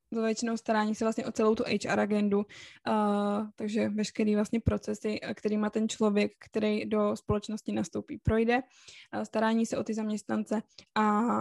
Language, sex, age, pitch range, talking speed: Czech, female, 10-29, 205-220 Hz, 160 wpm